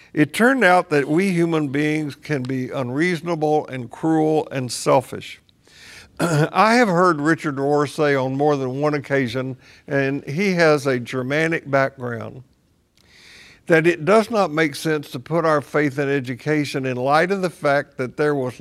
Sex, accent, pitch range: male, American, 135-160 Hz